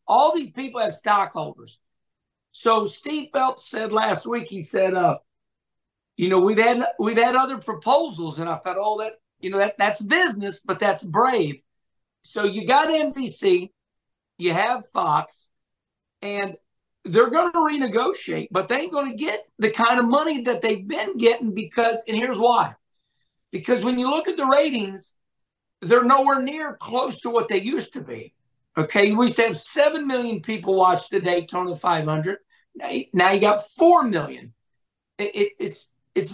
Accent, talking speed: American, 170 wpm